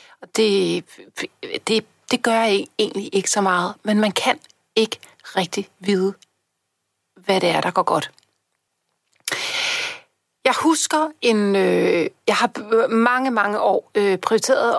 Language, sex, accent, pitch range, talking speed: Danish, female, native, 205-285 Hz, 130 wpm